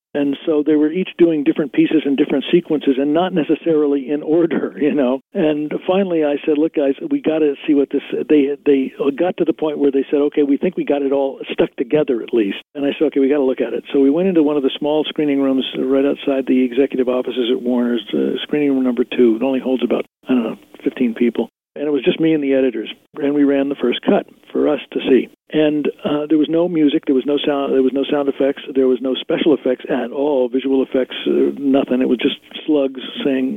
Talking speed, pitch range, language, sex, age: 250 wpm, 135-155 Hz, English, male, 50-69